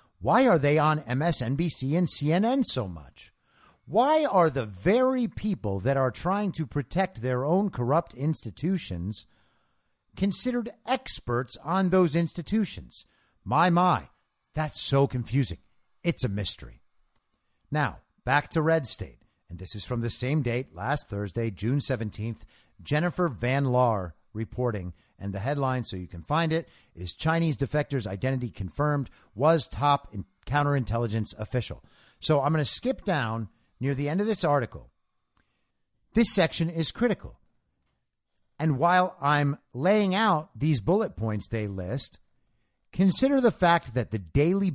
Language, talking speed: English, 140 wpm